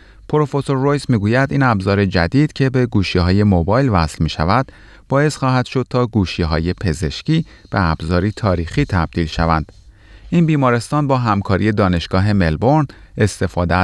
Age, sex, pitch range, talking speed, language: 30-49, male, 85-120 Hz, 130 wpm, Persian